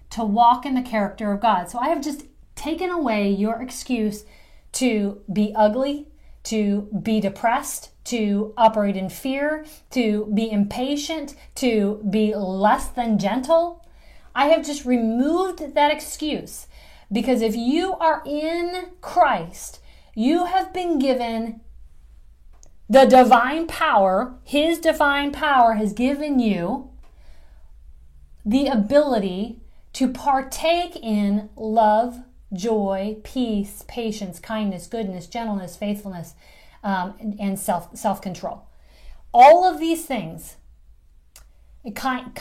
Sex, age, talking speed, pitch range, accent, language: female, 40-59, 115 wpm, 195-275 Hz, American, English